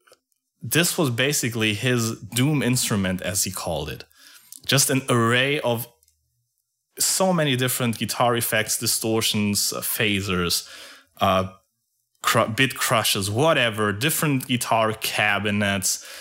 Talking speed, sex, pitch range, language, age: 105 wpm, male, 110-135 Hz, English, 20-39